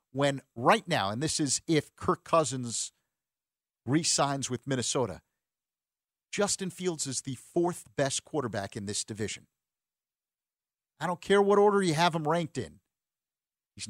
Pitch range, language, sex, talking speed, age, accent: 120-170 Hz, English, male, 145 wpm, 50-69, American